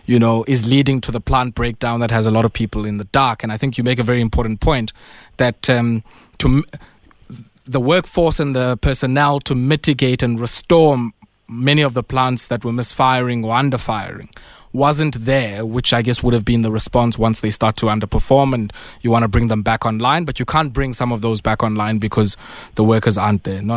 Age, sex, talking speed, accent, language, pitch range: 20-39, male, 220 wpm, South African, English, 115-135 Hz